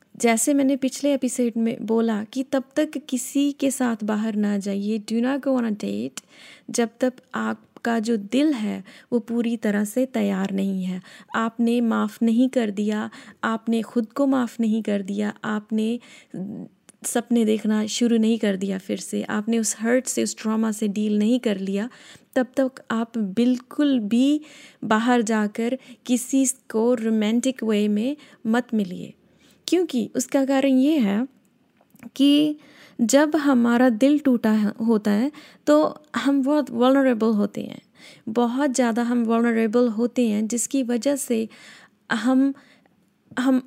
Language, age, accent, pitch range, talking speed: Hindi, 20-39, native, 220-260 Hz, 145 wpm